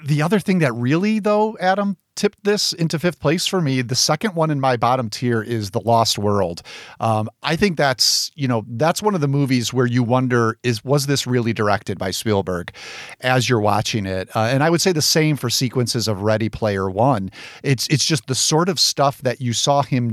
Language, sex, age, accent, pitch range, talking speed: English, male, 40-59, American, 115-160 Hz, 220 wpm